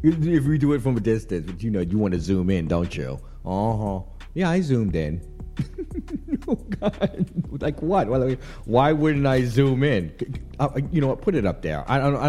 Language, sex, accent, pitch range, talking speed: English, male, American, 95-160 Hz, 205 wpm